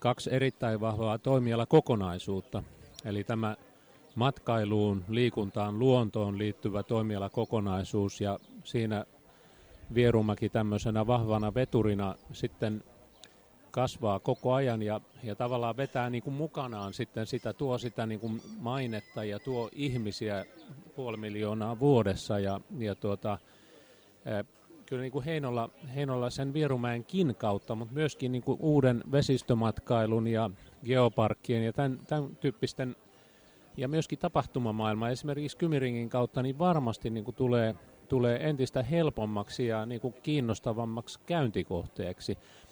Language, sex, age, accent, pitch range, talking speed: Finnish, male, 30-49, native, 110-130 Hz, 110 wpm